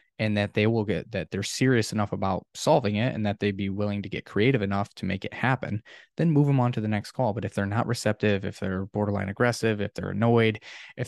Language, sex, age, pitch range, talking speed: English, male, 20-39, 100-115 Hz, 250 wpm